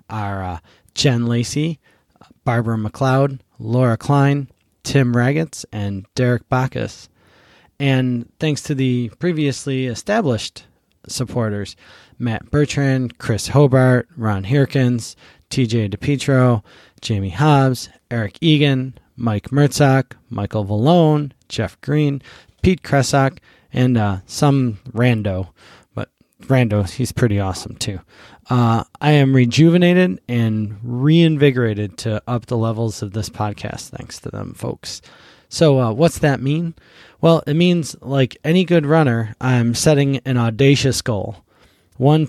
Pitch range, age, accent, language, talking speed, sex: 115-140 Hz, 20-39, American, English, 120 wpm, male